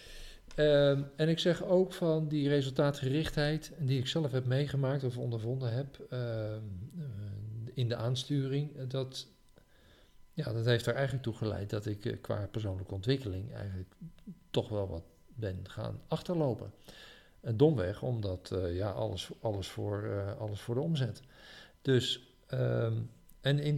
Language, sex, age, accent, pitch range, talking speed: Dutch, male, 50-69, Dutch, 105-140 Hz, 125 wpm